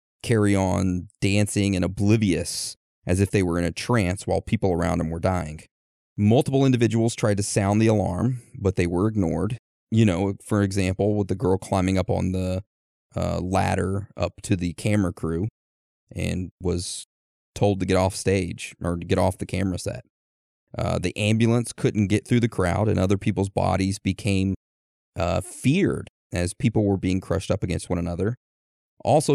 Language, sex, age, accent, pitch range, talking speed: English, male, 30-49, American, 90-110 Hz, 175 wpm